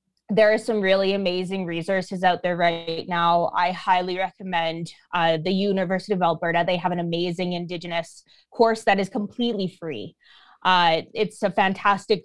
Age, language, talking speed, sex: 20-39, English, 155 wpm, female